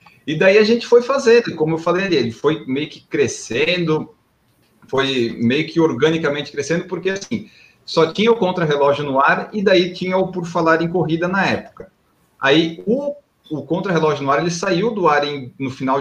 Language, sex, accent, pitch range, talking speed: Portuguese, male, Brazilian, 135-185 Hz, 190 wpm